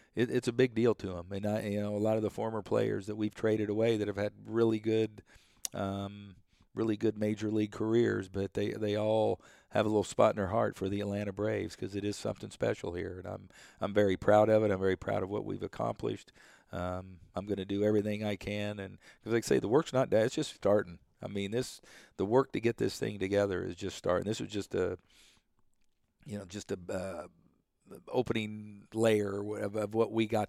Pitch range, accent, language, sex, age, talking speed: 100-110 Hz, American, English, male, 50-69, 230 wpm